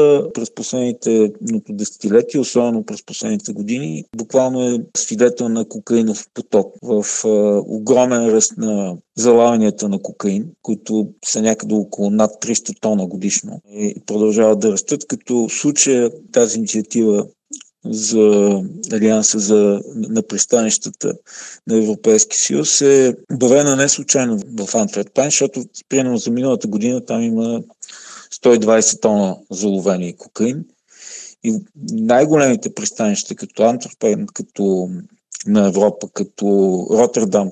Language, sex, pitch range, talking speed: Bulgarian, male, 110-140 Hz, 115 wpm